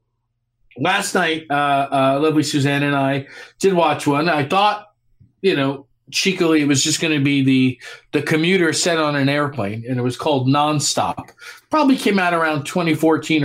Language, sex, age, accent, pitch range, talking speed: English, male, 40-59, American, 135-170 Hz, 175 wpm